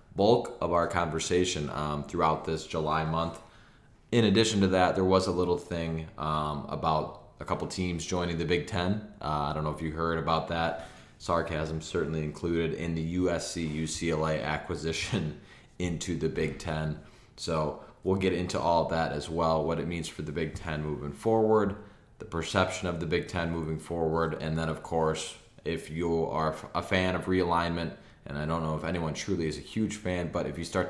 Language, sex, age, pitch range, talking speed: English, male, 20-39, 80-90 Hz, 190 wpm